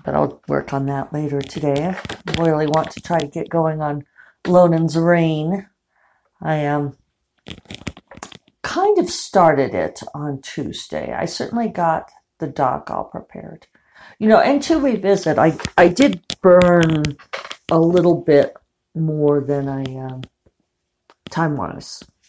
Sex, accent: female, American